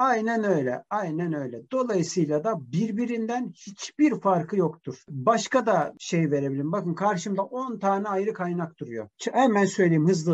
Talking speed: 140 wpm